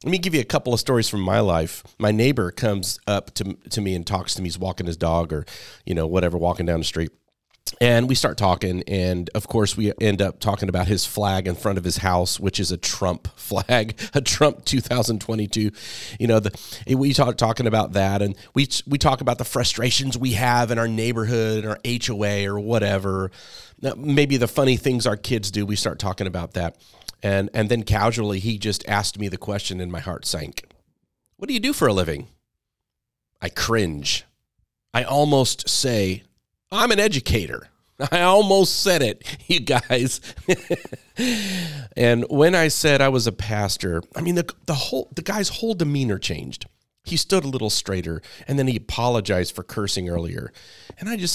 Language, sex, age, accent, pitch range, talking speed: English, male, 30-49, American, 95-130 Hz, 195 wpm